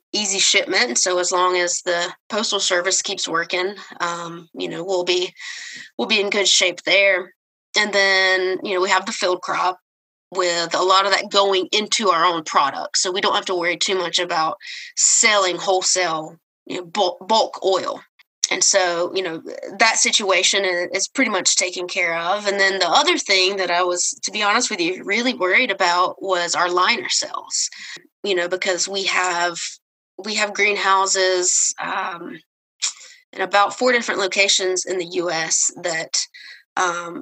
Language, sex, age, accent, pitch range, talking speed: English, female, 20-39, American, 180-205 Hz, 170 wpm